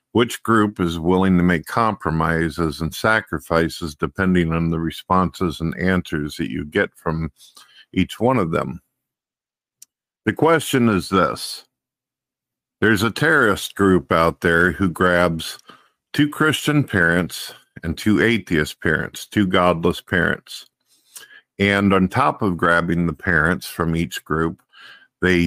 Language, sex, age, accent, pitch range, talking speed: English, male, 50-69, American, 85-105 Hz, 130 wpm